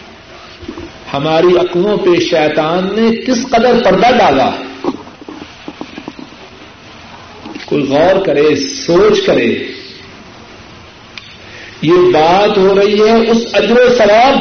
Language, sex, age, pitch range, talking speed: Urdu, male, 50-69, 130-210 Hz, 95 wpm